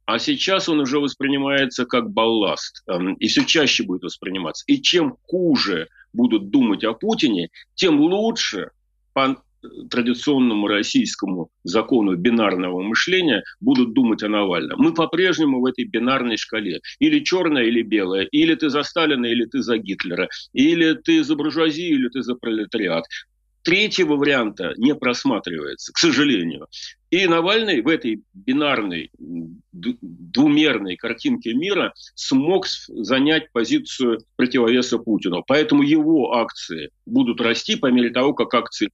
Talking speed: 135 wpm